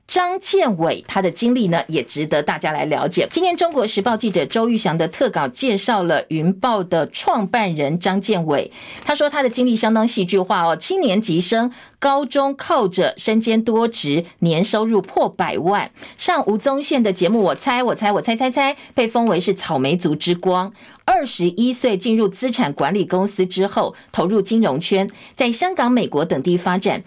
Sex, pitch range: female, 185-250 Hz